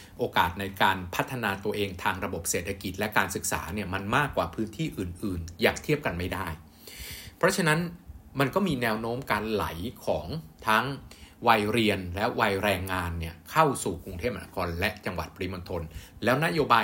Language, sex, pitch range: Thai, male, 90-115 Hz